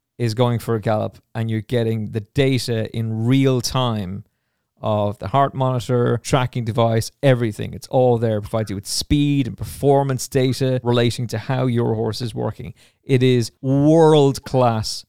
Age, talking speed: 30-49, 160 wpm